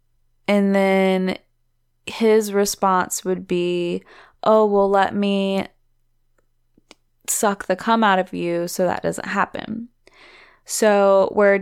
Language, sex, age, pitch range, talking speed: English, female, 20-39, 175-215 Hz, 115 wpm